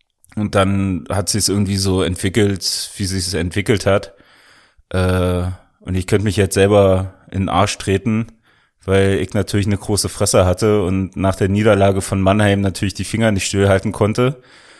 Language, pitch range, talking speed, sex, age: German, 95-110 Hz, 180 wpm, male, 30-49